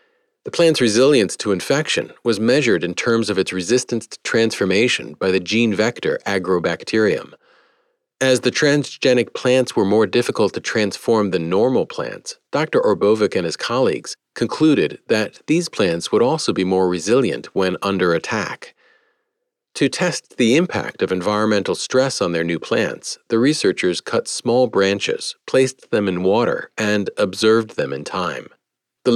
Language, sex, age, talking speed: English, male, 40-59, 150 wpm